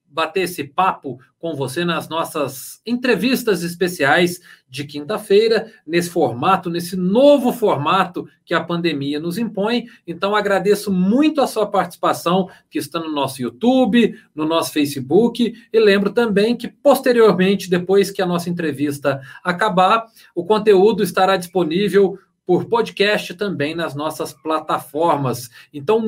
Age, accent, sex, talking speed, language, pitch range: 40-59, Brazilian, male, 130 wpm, Portuguese, 165-225 Hz